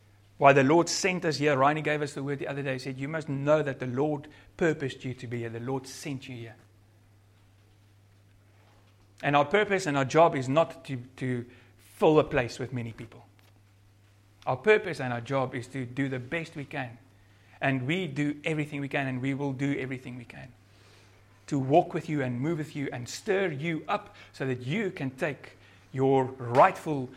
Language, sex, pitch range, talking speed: English, male, 105-145 Hz, 205 wpm